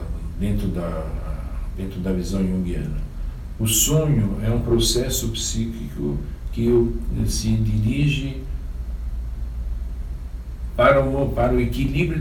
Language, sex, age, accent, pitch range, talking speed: Portuguese, male, 60-79, Brazilian, 95-140 Hz, 90 wpm